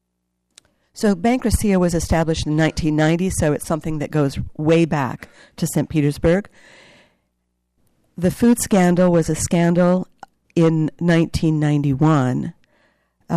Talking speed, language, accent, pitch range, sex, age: 110 wpm, English, American, 150-180 Hz, female, 50-69